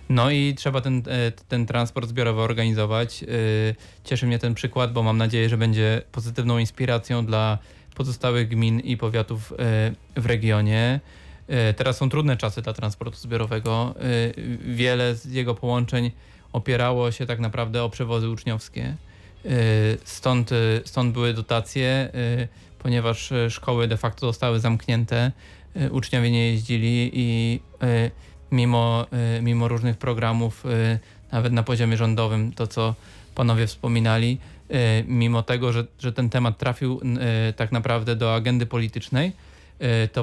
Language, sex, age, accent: Polish, male, 20-39, native